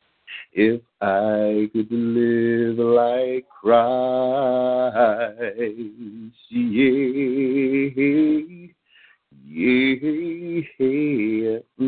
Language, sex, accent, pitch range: English, male, American, 125-170 Hz